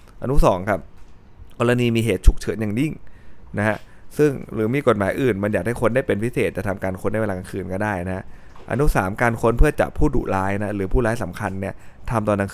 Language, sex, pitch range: Thai, male, 95-115 Hz